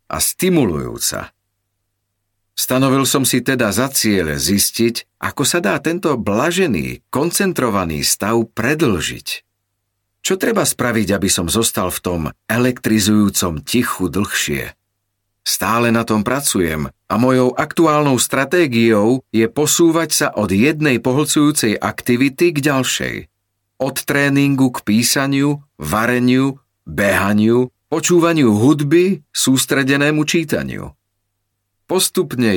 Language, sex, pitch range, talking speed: Slovak, male, 105-140 Hz, 105 wpm